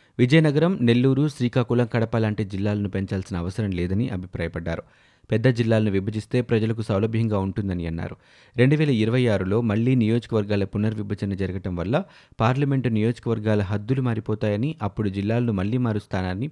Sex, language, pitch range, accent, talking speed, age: male, Telugu, 100-125 Hz, native, 125 wpm, 30-49